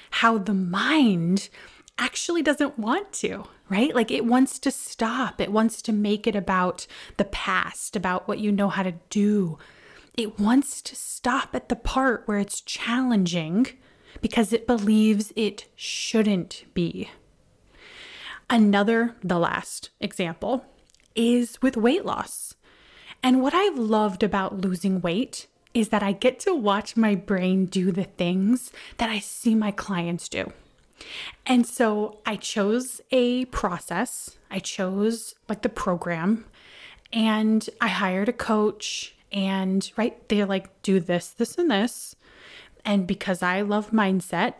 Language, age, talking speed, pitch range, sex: English, 20-39, 145 wpm, 195-245 Hz, female